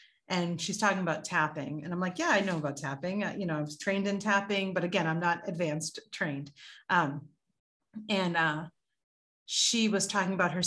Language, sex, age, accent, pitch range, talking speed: English, female, 30-49, American, 175-215 Hz, 195 wpm